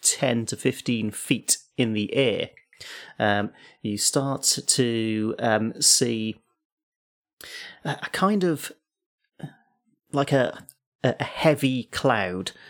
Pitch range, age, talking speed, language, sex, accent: 110-145 Hz, 30-49, 100 wpm, English, male, British